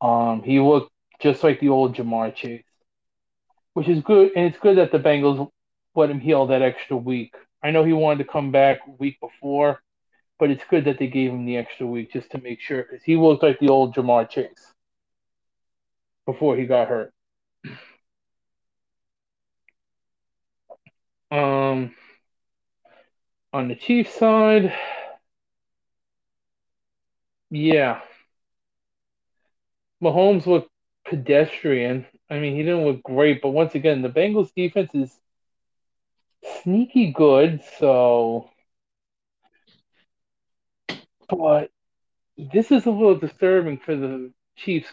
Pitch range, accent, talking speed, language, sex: 130-175 Hz, American, 125 wpm, English, male